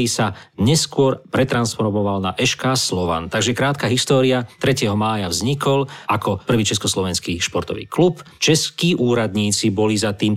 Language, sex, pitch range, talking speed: Slovak, male, 100-135 Hz, 125 wpm